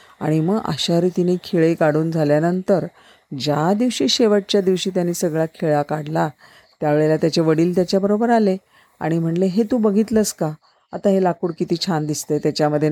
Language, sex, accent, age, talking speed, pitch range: Marathi, female, native, 40-59, 155 wpm, 160-205 Hz